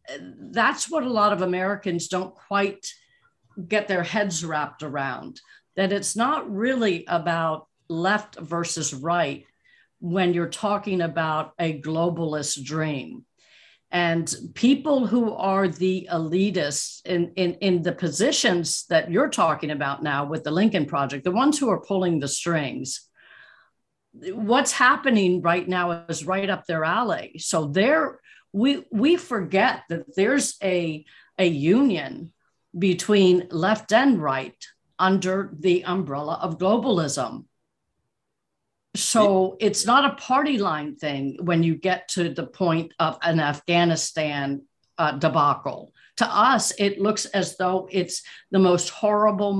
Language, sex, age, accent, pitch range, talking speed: English, female, 50-69, American, 165-200 Hz, 135 wpm